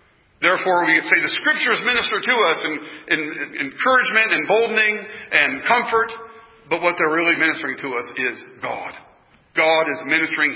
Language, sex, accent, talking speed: English, male, American, 155 wpm